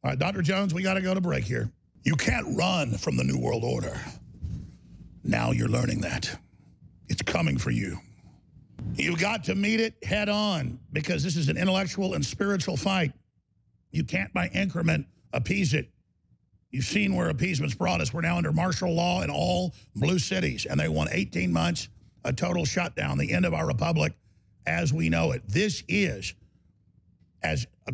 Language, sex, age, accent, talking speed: English, male, 50-69, American, 180 wpm